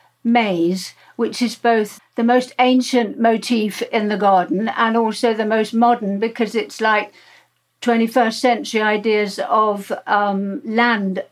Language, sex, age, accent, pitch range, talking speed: English, female, 60-79, British, 215-245 Hz, 135 wpm